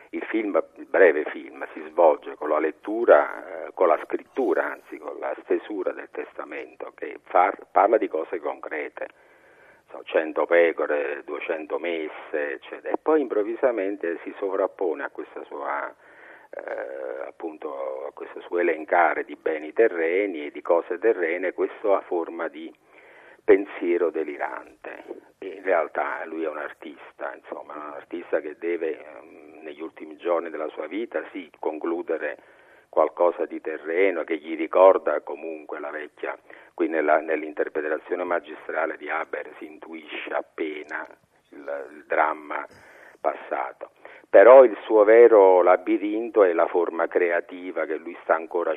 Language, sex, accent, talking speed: Italian, male, native, 135 wpm